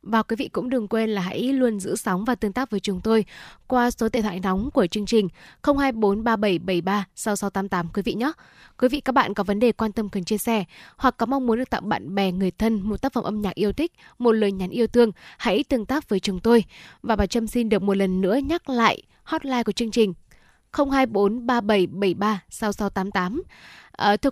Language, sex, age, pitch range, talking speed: Vietnamese, female, 10-29, 195-255 Hz, 210 wpm